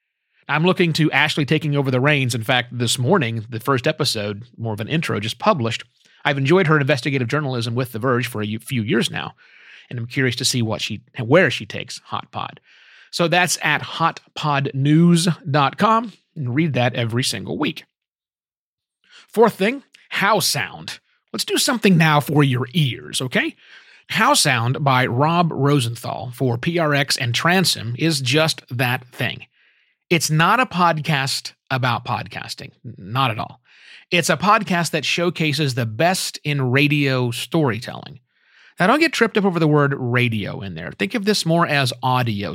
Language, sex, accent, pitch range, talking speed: English, male, American, 125-165 Hz, 165 wpm